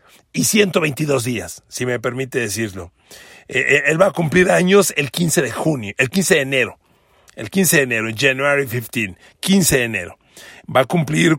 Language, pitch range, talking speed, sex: Spanish, 130-185 Hz, 175 wpm, male